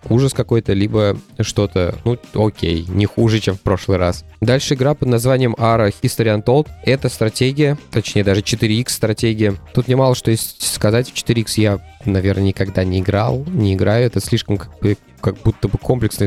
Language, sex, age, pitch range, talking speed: Russian, male, 20-39, 100-120 Hz, 175 wpm